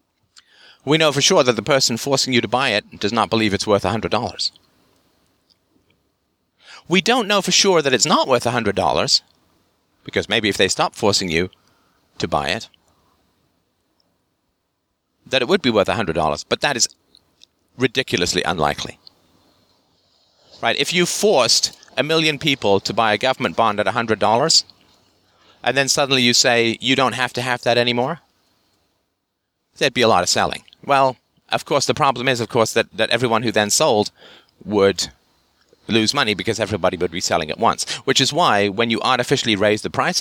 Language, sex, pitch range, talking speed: English, male, 95-130 Hz, 170 wpm